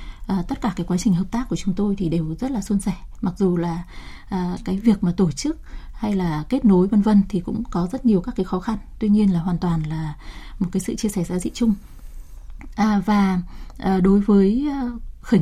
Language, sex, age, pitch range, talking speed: Vietnamese, female, 20-39, 180-220 Hz, 235 wpm